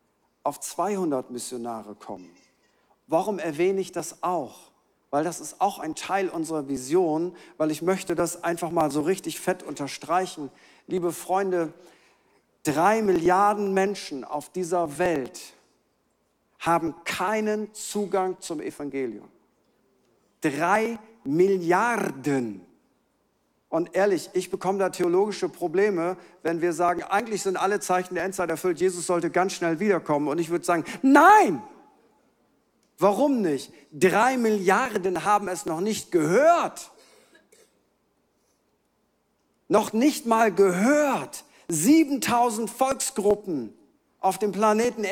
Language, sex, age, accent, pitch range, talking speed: German, male, 50-69, German, 175-225 Hz, 115 wpm